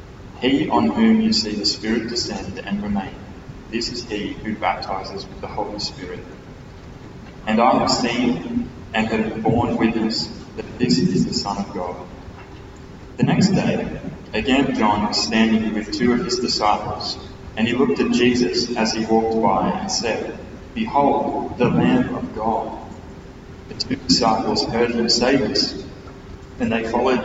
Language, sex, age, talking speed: English, male, 20-39, 160 wpm